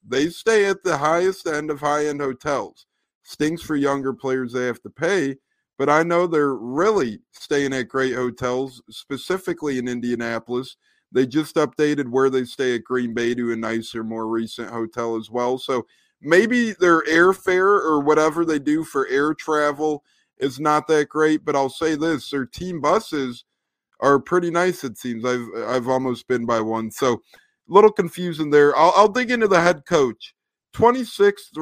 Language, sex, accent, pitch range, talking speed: English, male, American, 130-170 Hz, 175 wpm